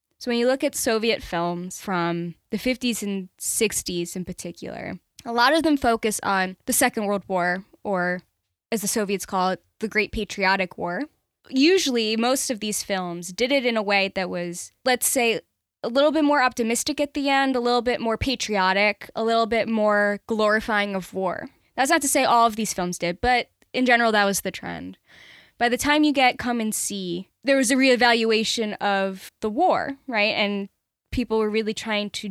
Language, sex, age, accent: English, female, 10-29, American